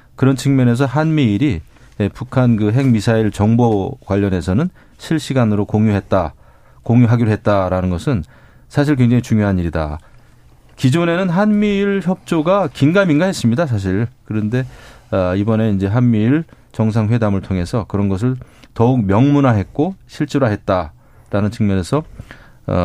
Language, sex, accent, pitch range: Korean, male, native, 105-135 Hz